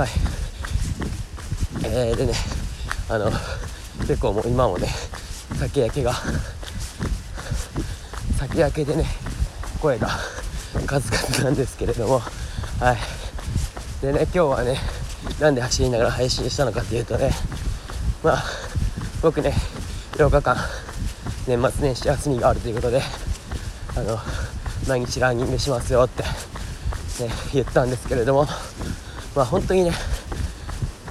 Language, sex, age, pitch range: Japanese, male, 40-59, 90-125 Hz